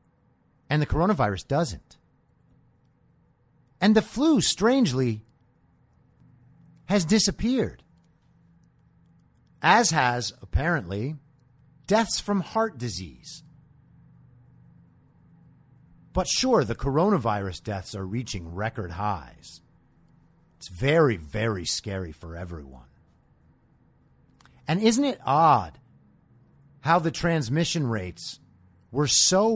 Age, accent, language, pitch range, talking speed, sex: 50-69, American, English, 105-160 Hz, 85 wpm, male